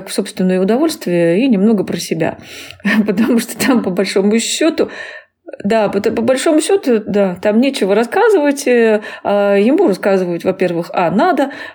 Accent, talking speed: native, 130 wpm